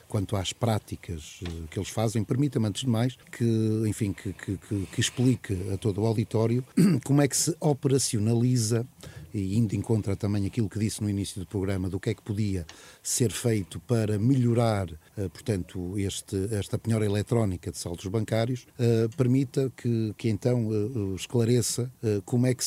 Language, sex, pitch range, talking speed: Portuguese, male, 100-125 Hz, 160 wpm